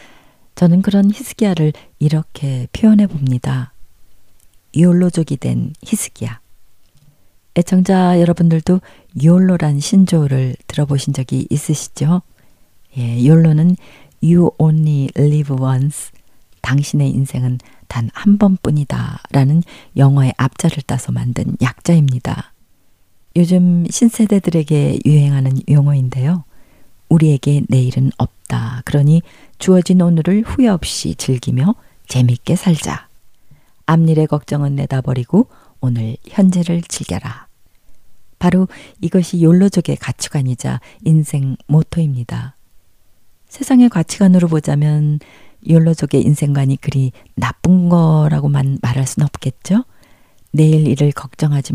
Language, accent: Korean, native